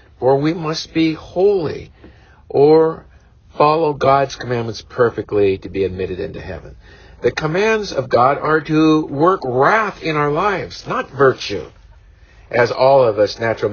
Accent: American